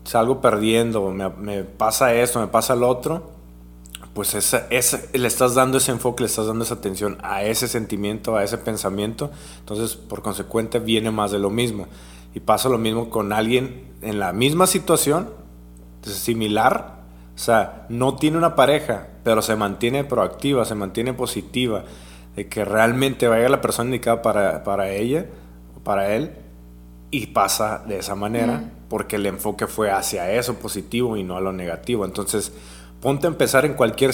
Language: Spanish